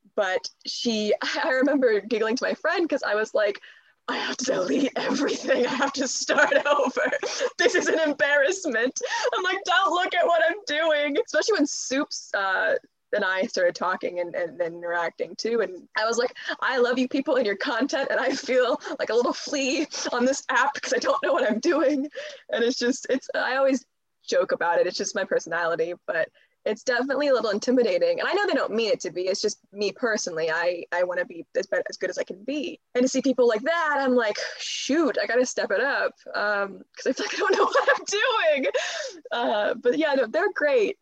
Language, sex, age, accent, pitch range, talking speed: English, female, 20-39, American, 225-345 Hz, 220 wpm